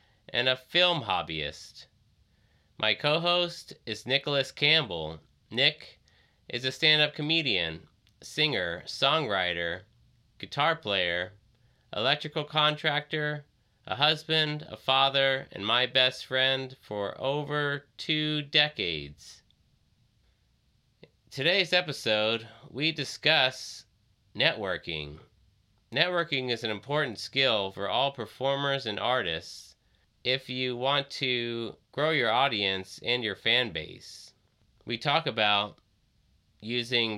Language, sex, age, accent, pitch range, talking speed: English, male, 30-49, American, 100-140 Hz, 100 wpm